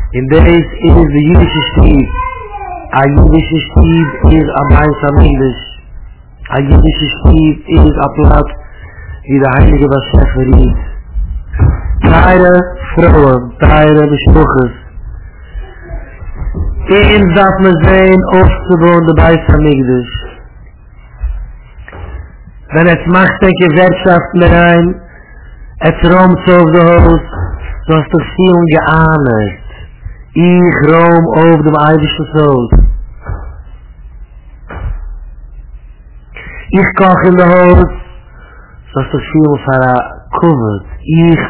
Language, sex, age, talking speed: English, male, 60-79, 110 wpm